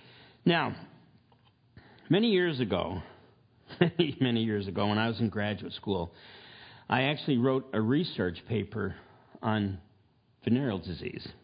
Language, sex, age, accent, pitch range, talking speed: English, male, 50-69, American, 110-150 Hz, 120 wpm